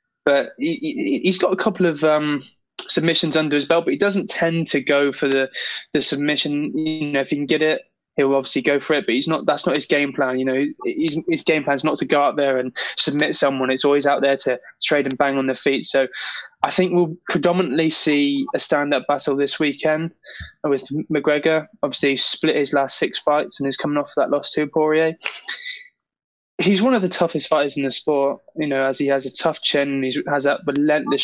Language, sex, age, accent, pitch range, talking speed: English, male, 20-39, British, 140-165 Hz, 225 wpm